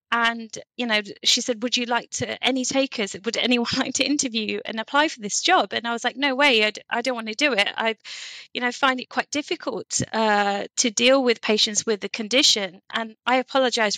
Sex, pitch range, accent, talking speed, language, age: female, 215-265 Hz, British, 220 wpm, English, 20-39